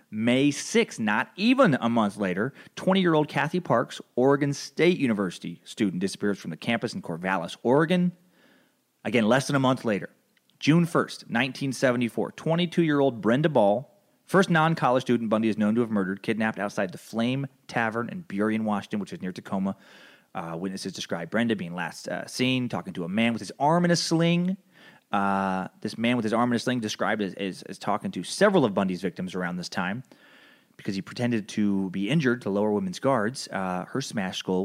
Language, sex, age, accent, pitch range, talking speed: English, male, 30-49, American, 105-160 Hz, 185 wpm